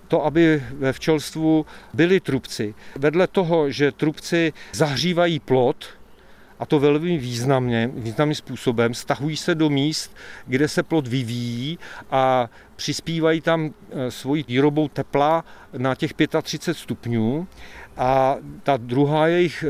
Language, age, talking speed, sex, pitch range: Czech, 40-59, 120 wpm, male, 130-165 Hz